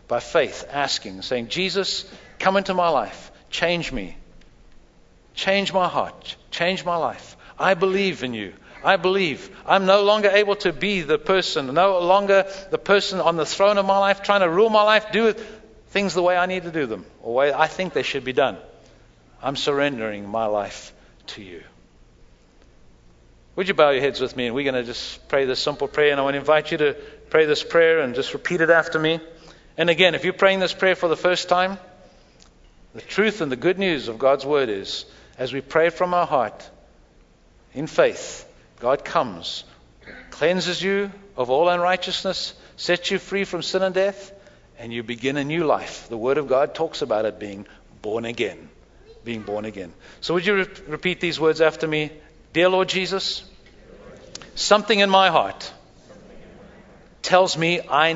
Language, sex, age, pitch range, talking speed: English, male, 60-79, 145-195 Hz, 190 wpm